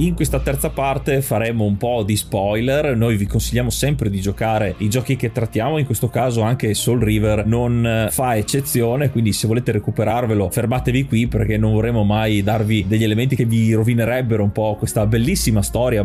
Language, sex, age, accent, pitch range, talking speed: Italian, male, 30-49, native, 110-125 Hz, 185 wpm